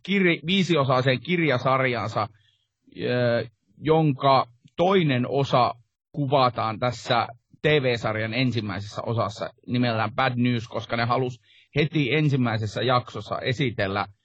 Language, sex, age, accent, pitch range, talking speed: Finnish, male, 30-49, native, 115-140 Hz, 85 wpm